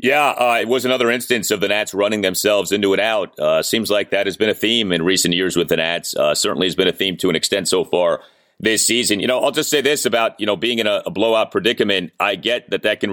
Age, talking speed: 40-59, 280 wpm